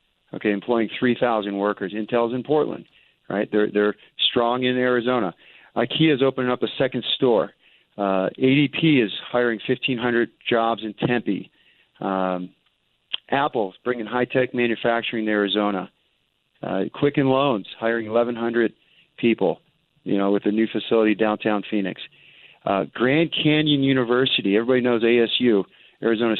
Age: 40-59